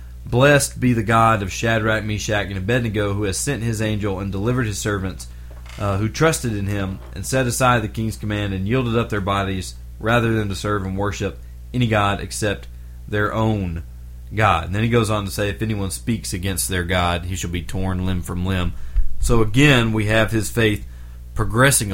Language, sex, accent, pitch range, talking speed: English, male, American, 90-115 Hz, 200 wpm